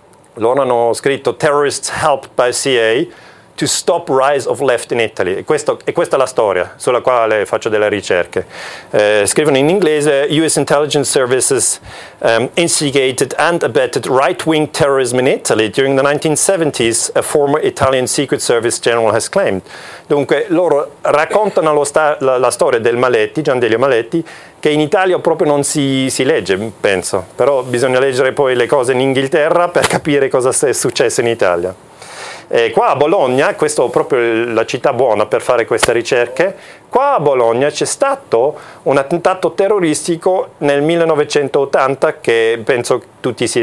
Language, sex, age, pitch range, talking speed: German, male, 40-59, 135-190 Hz, 160 wpm